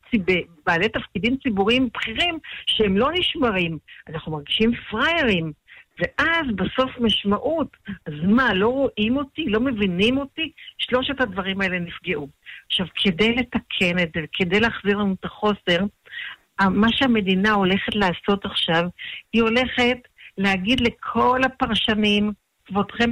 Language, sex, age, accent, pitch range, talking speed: Hebrew, female, 50-69, native, 195-260 Hz, 120 wpm